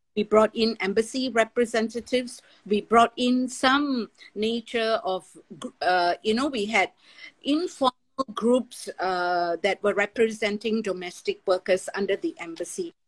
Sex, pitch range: female, 195-250 Hz